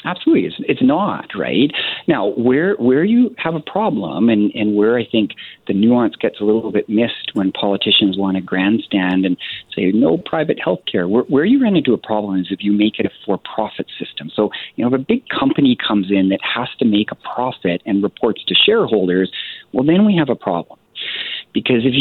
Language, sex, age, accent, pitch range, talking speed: English, male, 40-59, American, 100-140 Hz, 205 wpm